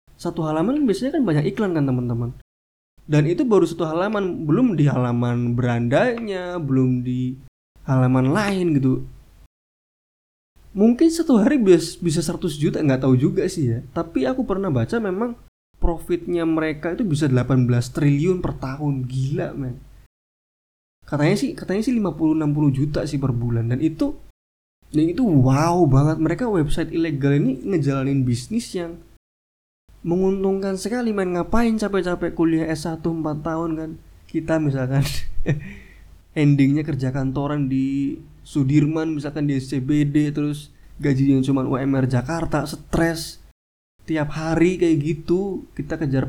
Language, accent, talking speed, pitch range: Indonesian, native, 135 wpm, 130-170 Hz